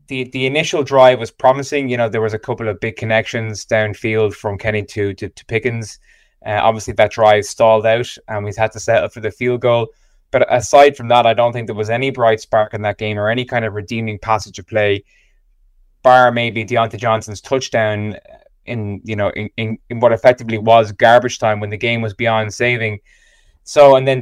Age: 20-39